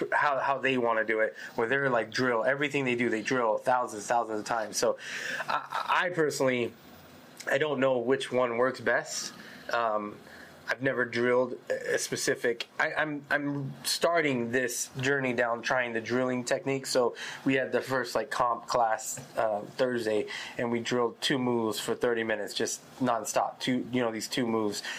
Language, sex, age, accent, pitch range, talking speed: English, male, 20-39, American, 120-140 Hz, 180 wpm